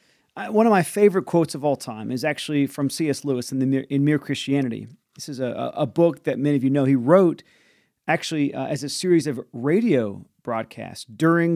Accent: American